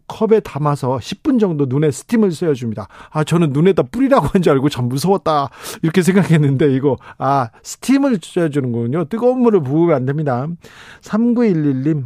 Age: 40-59